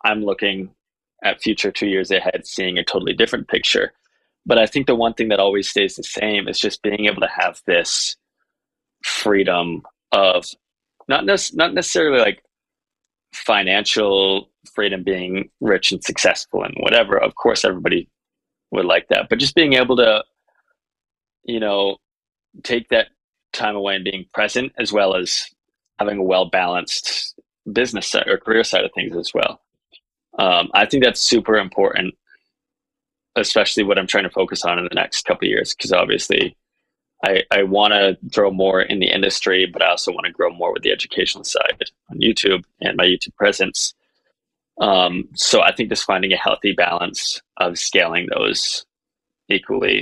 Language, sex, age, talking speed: English, male, 20-39, 165 wpm